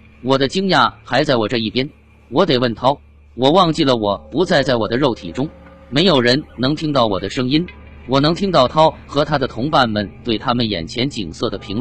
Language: Chinese